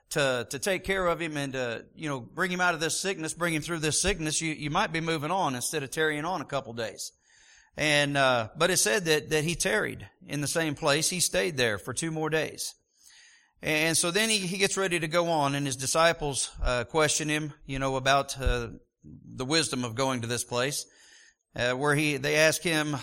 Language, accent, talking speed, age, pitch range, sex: English, American, 230 wpm, 40-59, 135-165 Hz, male